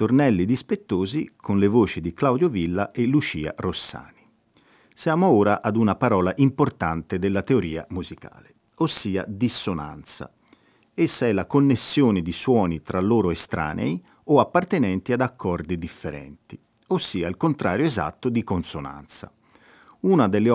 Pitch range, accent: 90-130 Hz, native